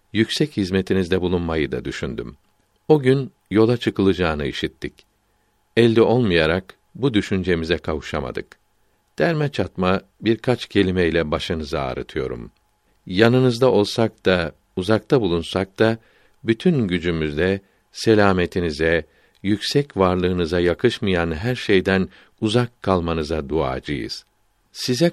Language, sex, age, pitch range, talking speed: Turkish, male, 50-69, 90-110 Hz, 95 wpm